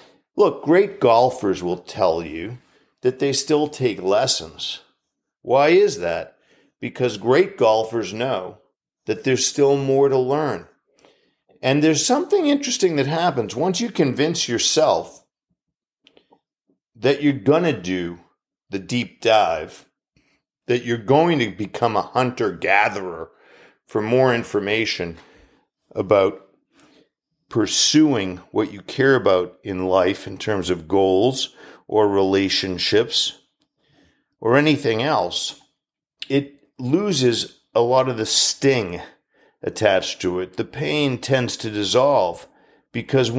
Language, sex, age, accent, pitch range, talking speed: English, male, 50-69, American, 110-145 Hz, 120 wpm